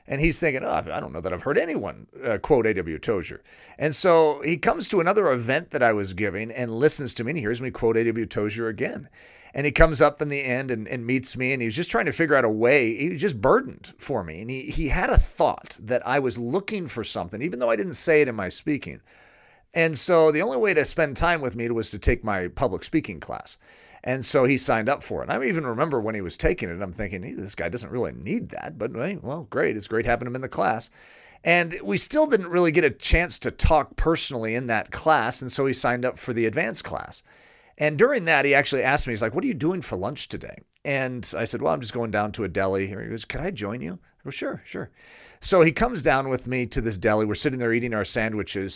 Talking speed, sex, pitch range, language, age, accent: 260 wpm, male, 110-150 Hz, English, 40-59, American